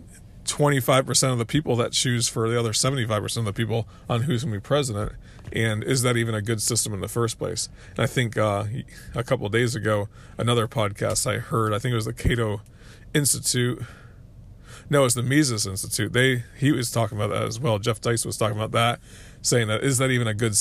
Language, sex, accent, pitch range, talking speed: English, male, American, 110-130 Hz, 220 wpm